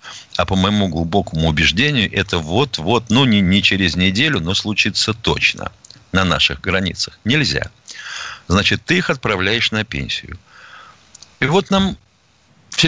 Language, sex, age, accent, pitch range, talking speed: Russian, male, 50-69, native, 95-140 Hz, 135 wpm